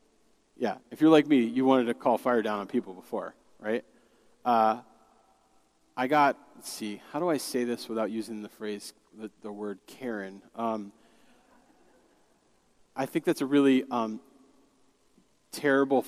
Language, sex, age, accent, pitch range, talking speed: English, male, 30-49, American, 120-185 Hz, 155 wpm